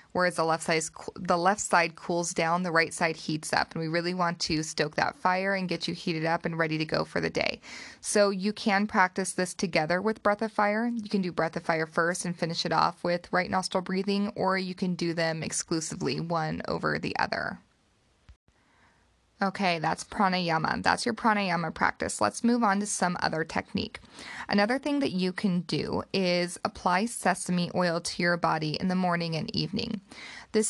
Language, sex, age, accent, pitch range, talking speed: English, female, 20-39, American, 170-200 Hz, 195 wpm